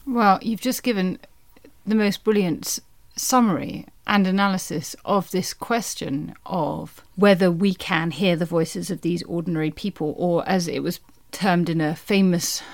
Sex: female